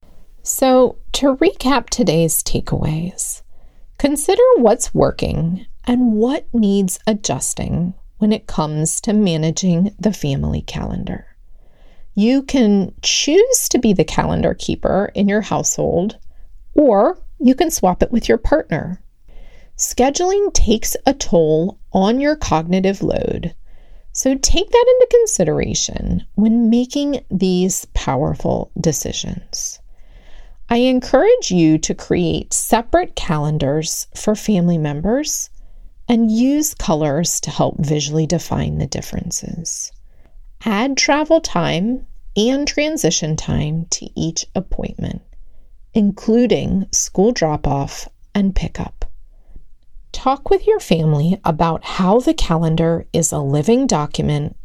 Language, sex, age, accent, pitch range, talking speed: English, female, 30-49, American, 165-255 Hz, 110 wpm